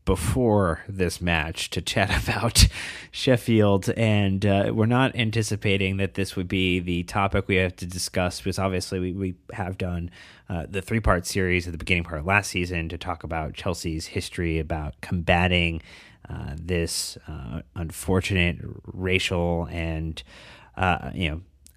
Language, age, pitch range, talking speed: English, 30-49, 85-95 Hz, 150 wpm